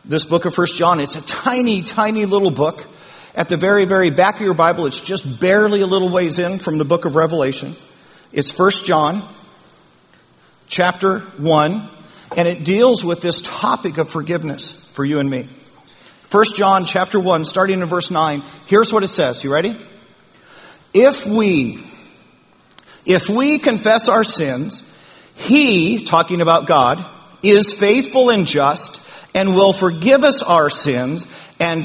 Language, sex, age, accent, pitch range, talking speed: English, male, 50-69, American, 165-205 Hz, 160 wpm